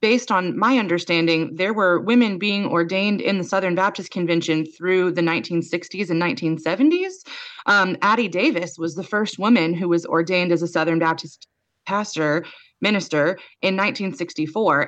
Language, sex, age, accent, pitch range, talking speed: English, female, 20-39, American, 160-205 Hz, 150 wpm